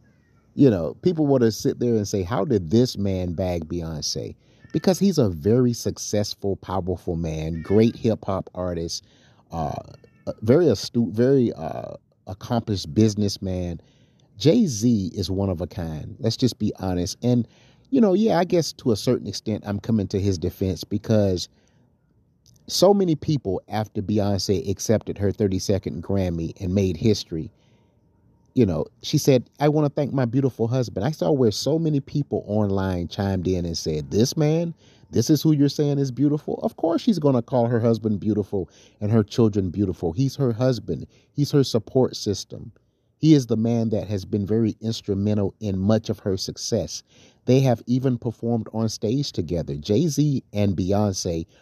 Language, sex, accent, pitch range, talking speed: English, male, American, 100-130 Hz, 170 wpm